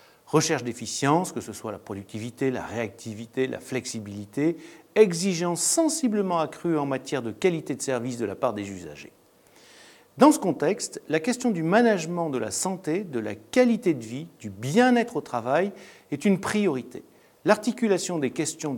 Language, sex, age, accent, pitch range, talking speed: French, male, 50-69, French, 115-175 Hz, 160 wpm